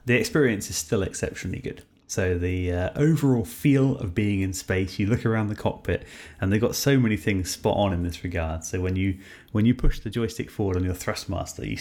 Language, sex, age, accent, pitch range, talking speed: English, male, 30-49, British, 90-110 Hz, 230 wpm